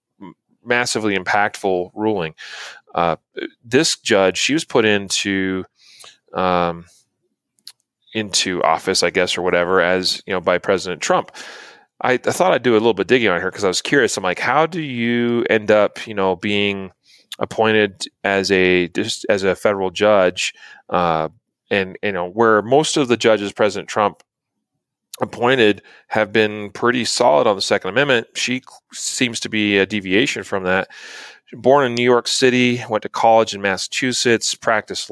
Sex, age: male, 30-49